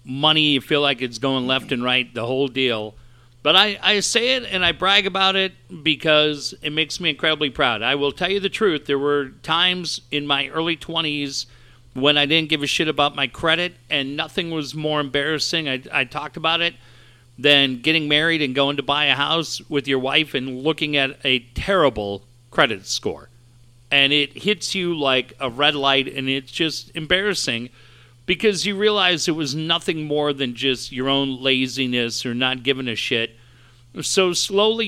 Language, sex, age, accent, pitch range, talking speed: English, male, 50-69, American, 130-165 Hz, 190 wpm